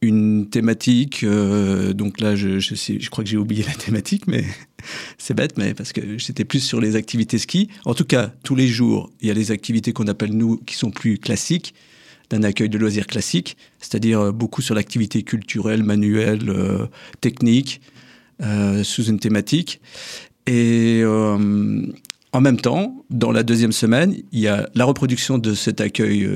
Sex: male